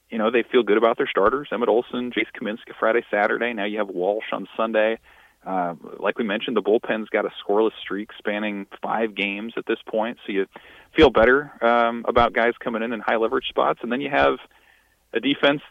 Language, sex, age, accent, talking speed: English, male, 40-59, American, 205 wpm